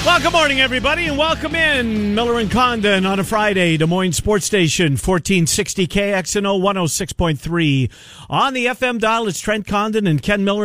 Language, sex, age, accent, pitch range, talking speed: English, male, 50-69, American, 135-200 Hz, 170 wpm